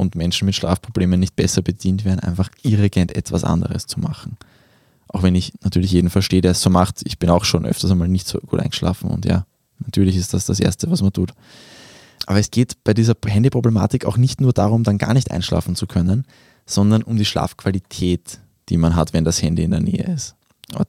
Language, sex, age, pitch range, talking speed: German, male, 20-39, 90-115 Hz, 215 wpm